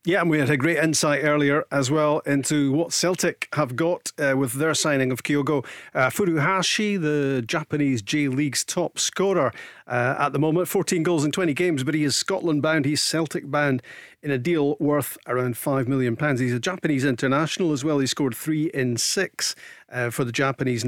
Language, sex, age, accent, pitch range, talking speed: English, male, 40-59, British, 130-155 Hz, 185 wpm